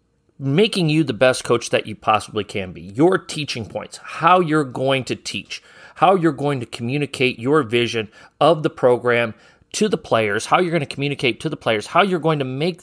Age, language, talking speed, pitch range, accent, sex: 40-59, English, 205 wpm, 115-155 Hz, American, male